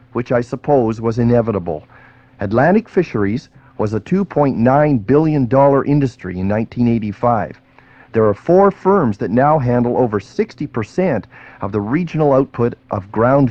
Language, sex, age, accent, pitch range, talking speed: English, male, 40-59, American, 110-150 Hz, 130 wpm